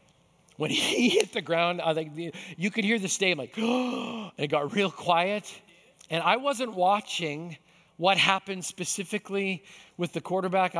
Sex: male